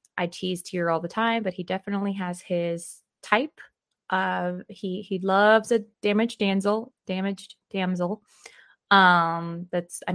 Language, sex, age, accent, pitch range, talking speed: English, female, 20-39, American, 180-240 Hz, 140 wpm